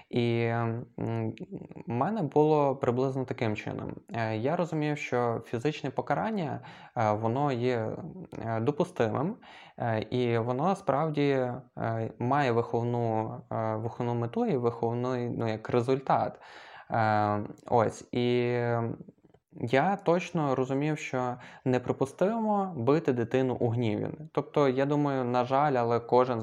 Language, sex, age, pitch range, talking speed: Ukrainian, male, 20-39, 115-135 Hz, 100 wpm